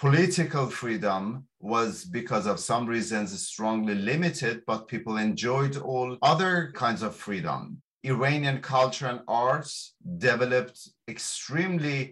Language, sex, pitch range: English, male, 110-140 Hz